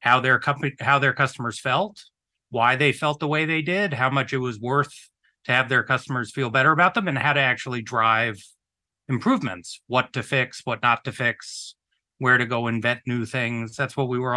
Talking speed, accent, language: 200 wpm, American, English